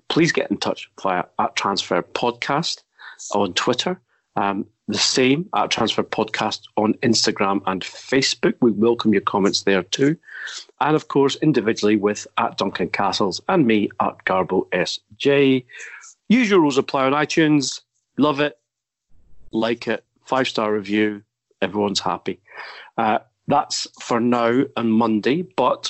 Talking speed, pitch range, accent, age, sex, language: 140 wpm, 110-150 Hz, British, 40-59, male, English